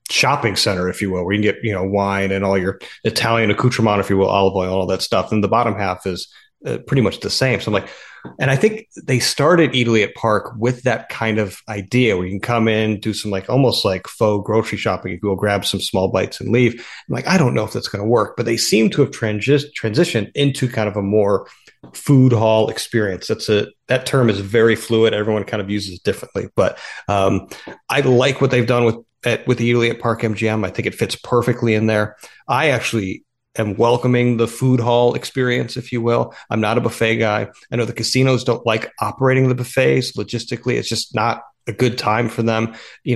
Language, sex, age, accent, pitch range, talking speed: English, male, 30-49, American, 105-125 Hz, 230 wpm